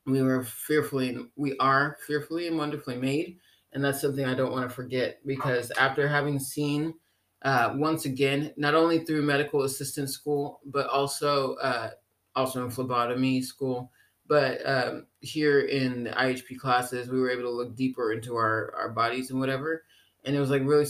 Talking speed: 175 wpm